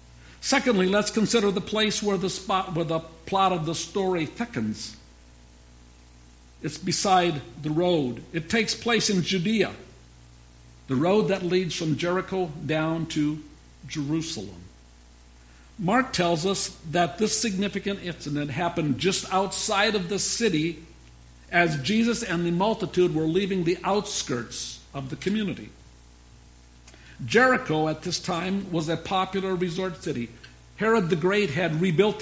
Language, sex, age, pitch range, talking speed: English, male, 60-79, 130-190 Hz, 135 wpm